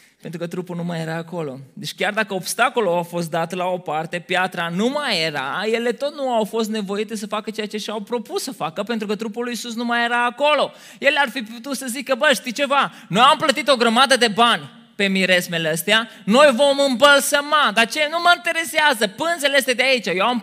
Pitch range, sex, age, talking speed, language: 185-240 Hz, male, 20-39, 225 wpm, Romanian